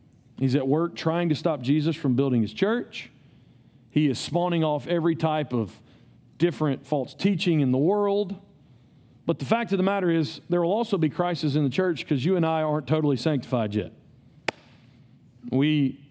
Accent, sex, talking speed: American, male, 180 wpm